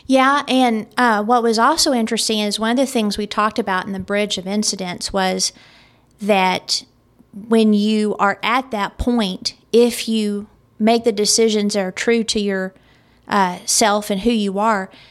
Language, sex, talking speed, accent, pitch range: English, female, 175 wpm, American, 195-230 Hz